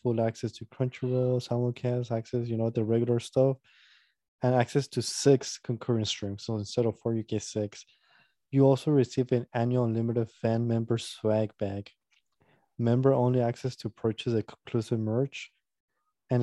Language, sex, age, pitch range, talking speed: English, male, 20-39, 115-130 Hz, 155 wpm